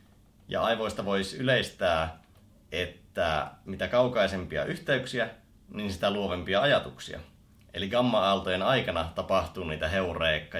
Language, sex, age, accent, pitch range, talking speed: Finnish, male, 30-49, native, 95-115 Hz, 100 wpm